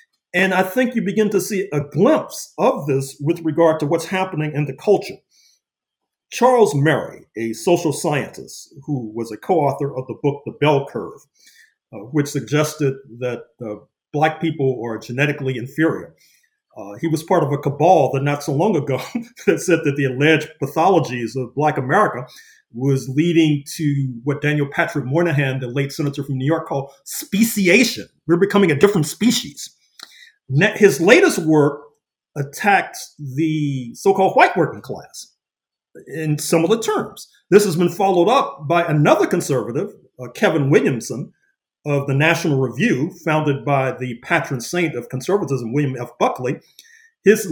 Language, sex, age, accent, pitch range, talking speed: English, male, 40-59, American, 140-185 Hz, 155 wpm